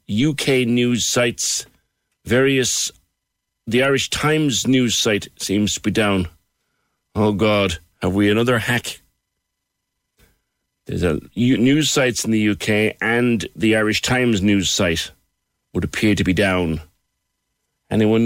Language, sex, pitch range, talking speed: English, male, 95-120 Hz, 125 wpm